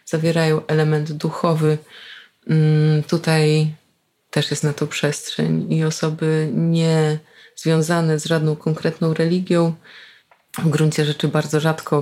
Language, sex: Polish, female